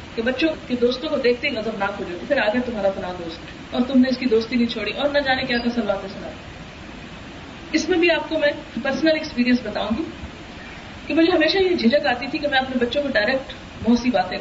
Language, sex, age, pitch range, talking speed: Urdu, female, 30-49, 245-315 Hz, 230 wpm